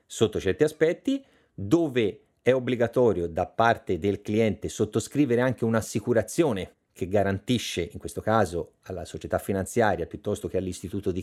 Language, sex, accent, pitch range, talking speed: Italian, male, native, 100-130 Hz, 135 wpm